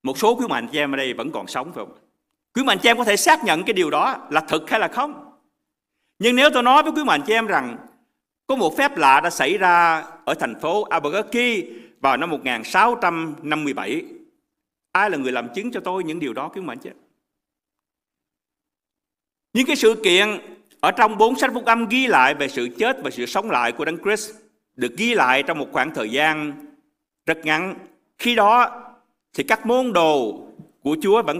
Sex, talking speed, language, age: male, 205 wpm, Vietnamese, 50-69